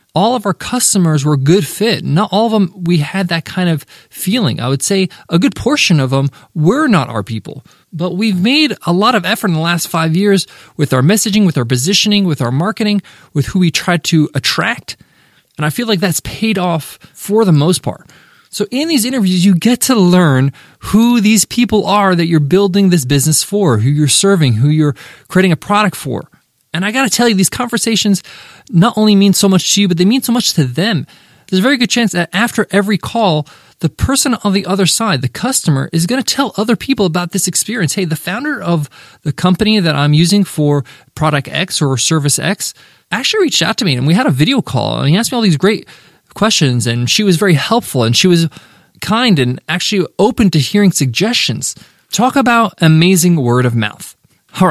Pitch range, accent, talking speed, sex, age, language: 155-210 Hz, American, 215 wpm, male, 20-39, English